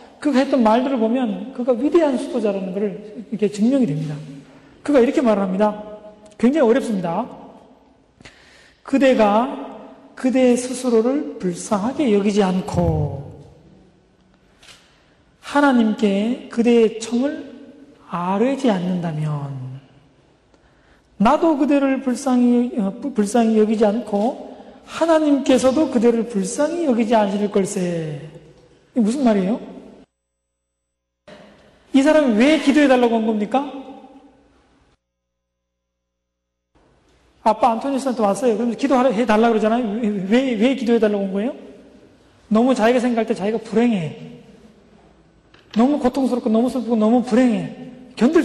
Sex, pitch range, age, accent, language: male, 205-260 Hz, 40-59, native, Korean